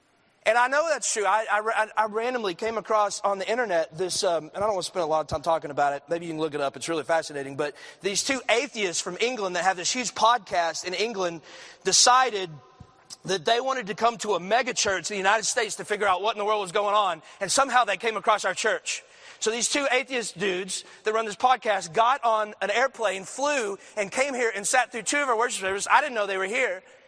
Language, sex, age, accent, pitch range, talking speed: English, male, 30-49, American, 190-250 Hz, 250 wpm